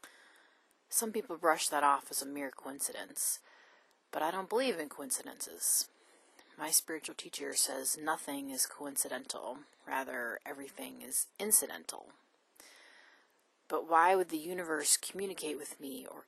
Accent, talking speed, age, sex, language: American, 130 wpm, 30-49, female, English